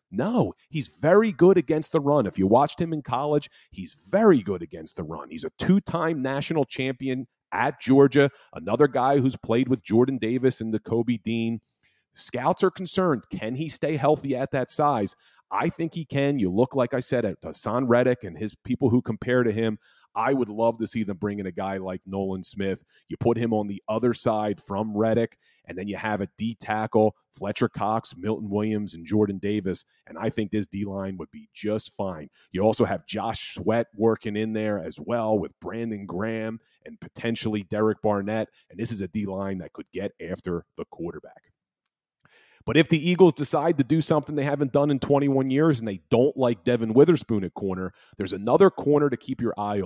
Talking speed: 205 wpm